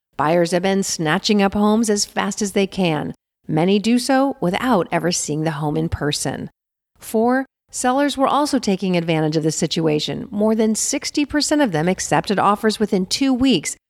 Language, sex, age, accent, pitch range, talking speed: English, female, 40-59, American, 165-250 Hz, 175 wpm